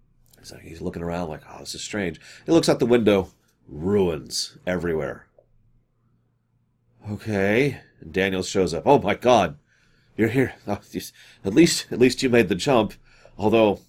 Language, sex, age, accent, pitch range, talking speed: English, male, 40-59, American, 90-120 Hz, 145 wpm